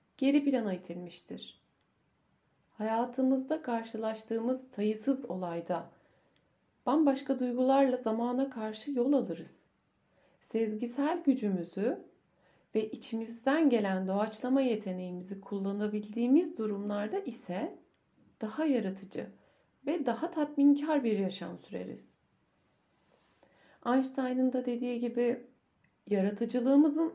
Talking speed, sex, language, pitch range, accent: 80 wpm, female, Turkish, 205-260 Hz, native